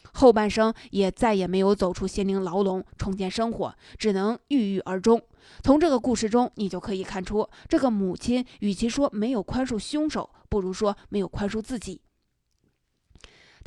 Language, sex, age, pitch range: Chinese, female, 20-39, 195-235 Hz